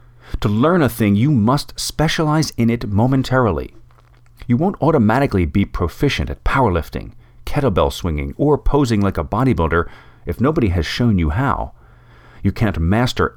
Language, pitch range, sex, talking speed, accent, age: English, 85-125 Hz, male, 150 wpm, American, 40-59